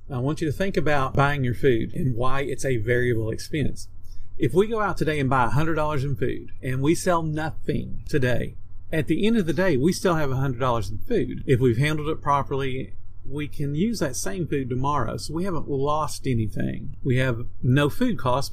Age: 50-69